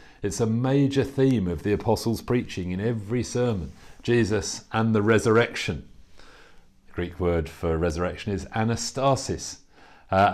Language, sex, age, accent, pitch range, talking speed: English, male, 40-59, British, 90-110 Hz, 135 wpm